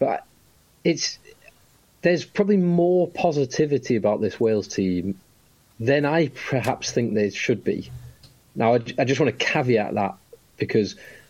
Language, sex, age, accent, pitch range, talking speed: English, male, 40-59, British, 100-130 Hz, 140 wpm